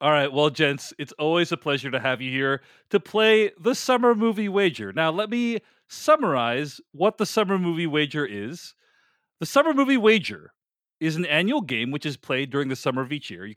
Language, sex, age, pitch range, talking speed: English, male, 40-59, 145-215 Hz, 205 wpm